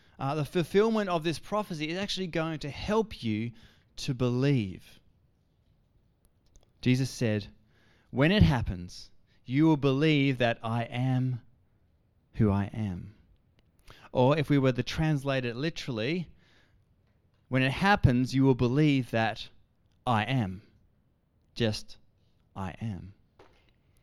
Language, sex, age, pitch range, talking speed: English, male, 20-39, 105-160 Hz, 120 wpm